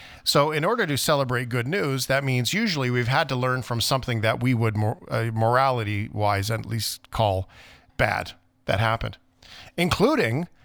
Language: English